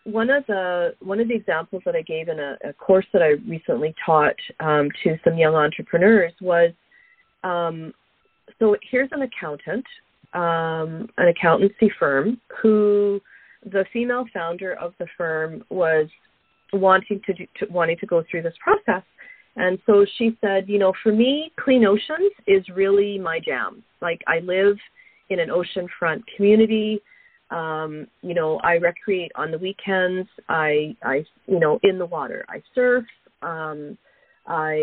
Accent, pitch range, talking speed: American, 170-235 Hz, 155 wpm